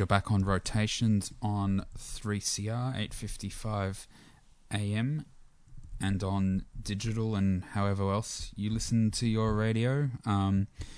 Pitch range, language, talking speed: 95-110 Hz, English, 105 wpm